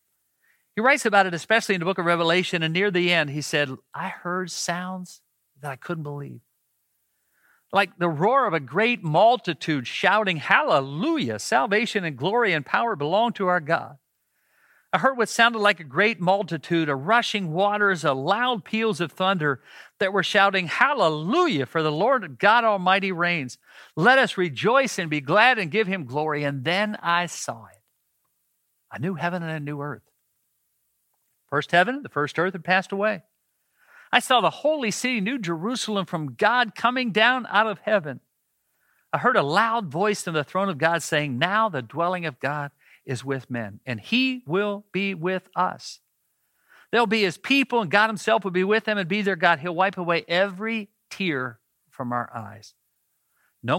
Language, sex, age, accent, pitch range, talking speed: English, male, 50-69, American, 150-215 Hz, 180 wpm